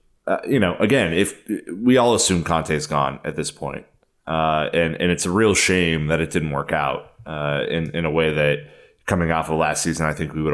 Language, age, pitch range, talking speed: English, 30-49, 75-90 Hz, 235 wpm